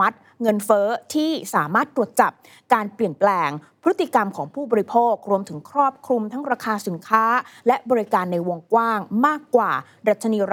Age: 20-39